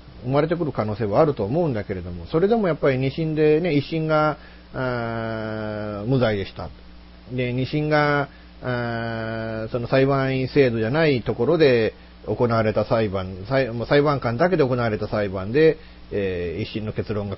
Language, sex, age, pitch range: Japanese, male, 40-59, 95-150 Hz